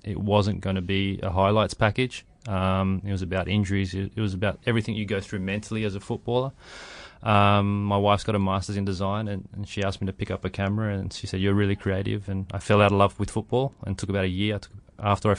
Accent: Australian